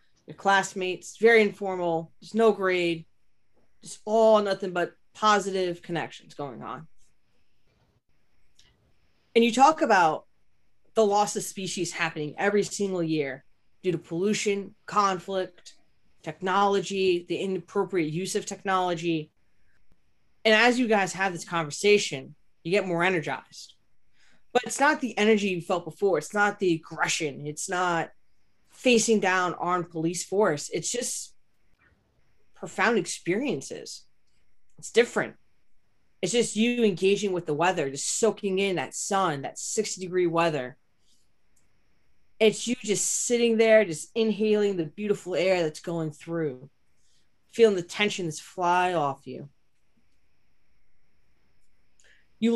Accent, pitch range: American, 165-205 Hz